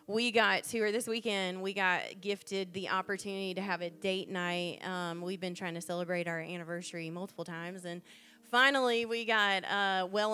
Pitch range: 195-245 Hz